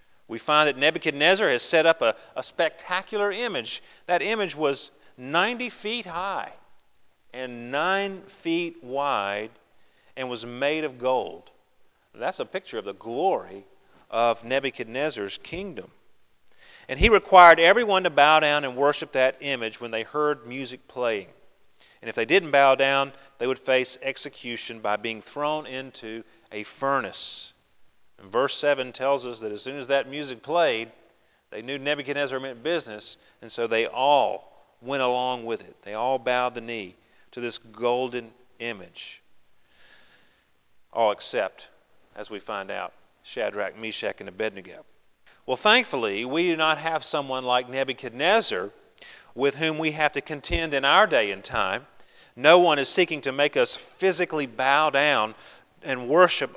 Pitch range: 125-160 Hz